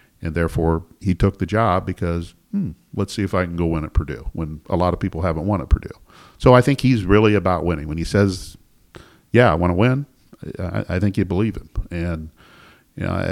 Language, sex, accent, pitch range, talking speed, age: English, male, American, 80-100 Hz, 225 wpm, 50-69